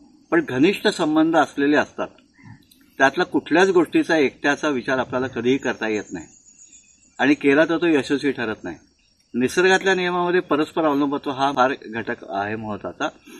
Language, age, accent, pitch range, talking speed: Marathi, 60-79, native, 130-190 Hz, 145 wpm